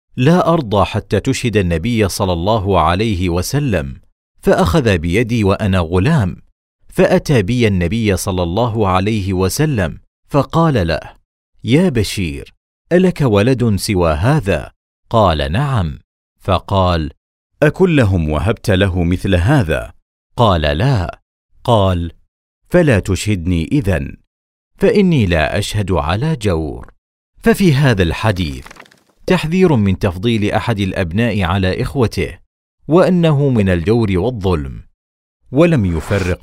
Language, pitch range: Arabic, 90-125 Hz